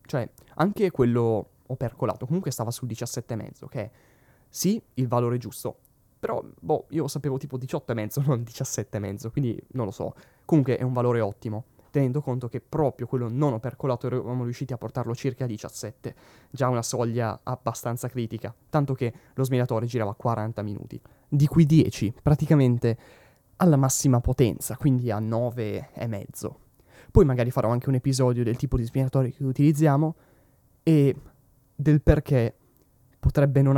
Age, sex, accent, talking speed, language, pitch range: 20-39, male, native, 155 wpm, Italian, 115-140 Hz